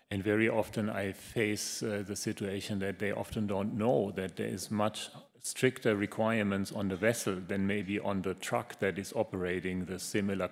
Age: 40-59